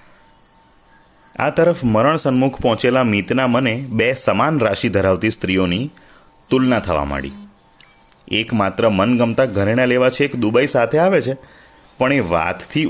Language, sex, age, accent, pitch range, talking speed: Gujarati, male, 30-49, native, 95-125 Hz, 130 wpm